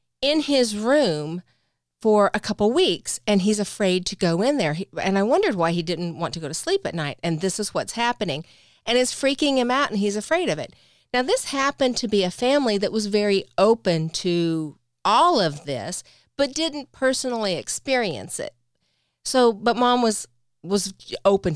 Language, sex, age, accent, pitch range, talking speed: English, female, 40-59, American, 175-250 Hz, 190 wpm